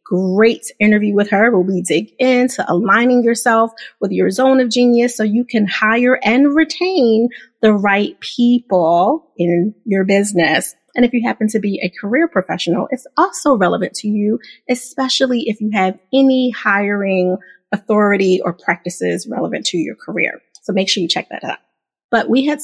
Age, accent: 30-49, American